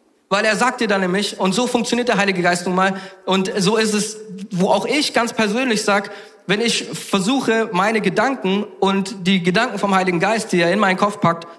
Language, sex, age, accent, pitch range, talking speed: German, male, 40-59, German, 195-240 Hz, 210 wpm